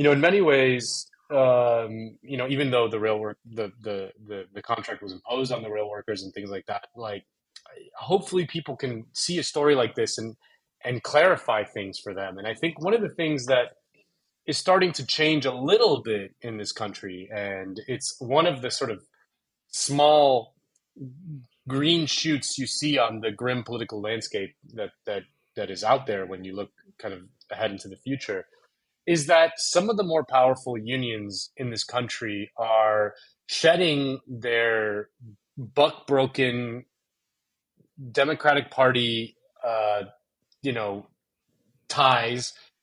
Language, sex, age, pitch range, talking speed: English, male, 30-49, 110-145 Hz, 160 wpm